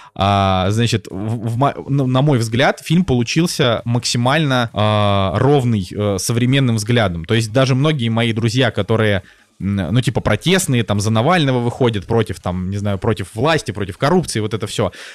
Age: 20-39